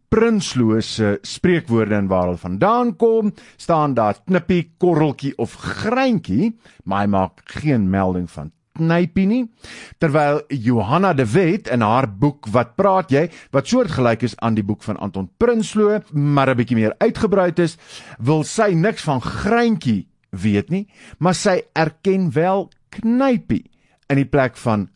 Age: 50-69